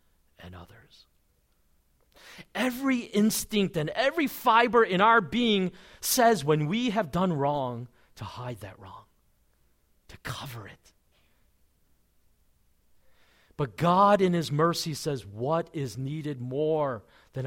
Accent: American